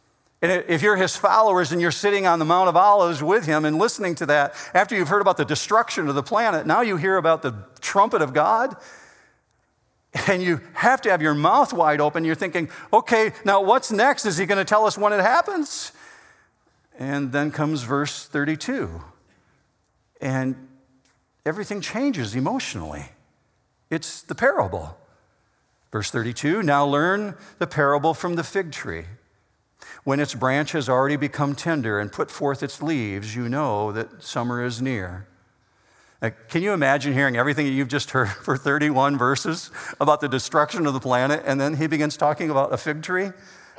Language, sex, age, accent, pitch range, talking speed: English, male, 50-69, American, 130-195 Hz, 175 wpm